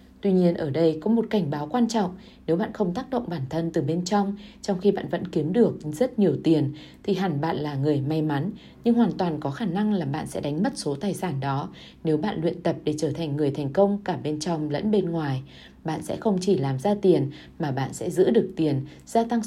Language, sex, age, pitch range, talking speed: Vietnamese, female, 20-39, 155-205 Hz, 255 wpm